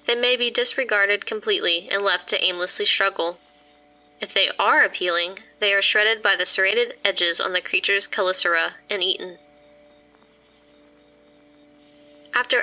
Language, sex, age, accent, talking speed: English, female, 10-29, American, 135 wpm